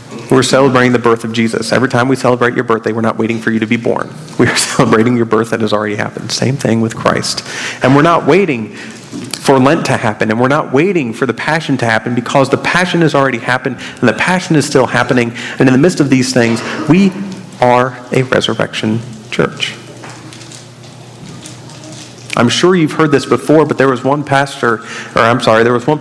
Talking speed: 210 wpm